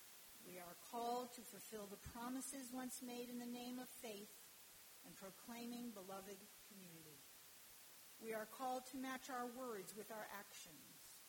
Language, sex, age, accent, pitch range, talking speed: English, female, 50-69, American, 195-245 Hz, 150 wpm